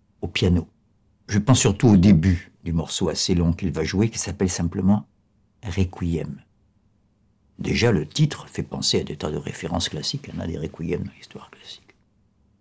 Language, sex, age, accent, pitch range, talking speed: French, male, 60-79, French, 90-105 Hz, 175 wpm